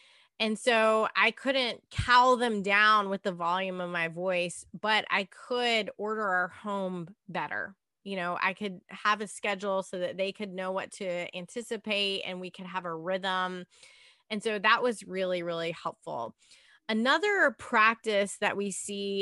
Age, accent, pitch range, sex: 20-39, American, 185-225 Hz, female